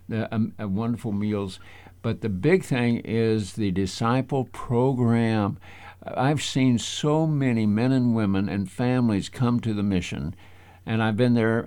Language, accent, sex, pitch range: English, American, male, 95-120 Hz